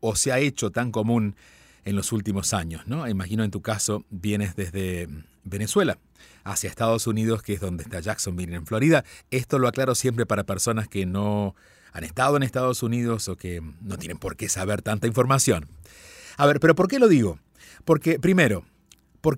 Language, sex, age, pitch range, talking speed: Spanish, male, 40-59, 100-150 Hz, 185 wpm